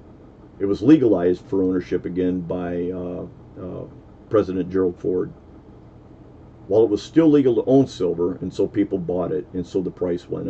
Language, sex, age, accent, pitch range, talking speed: English, male, 50-69, American, 90-115 Hz, 170 wpm